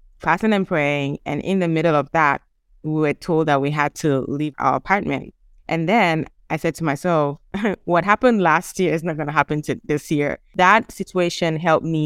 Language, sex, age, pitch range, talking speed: English, female, 20-39, 150-180 Hz, 205 wpm